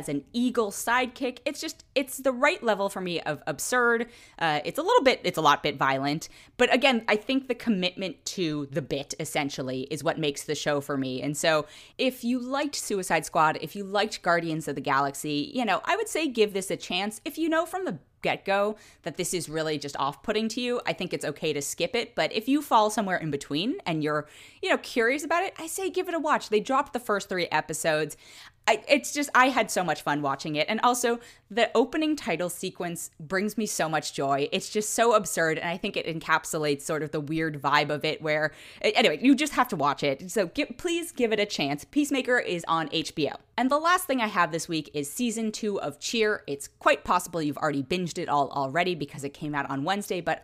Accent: American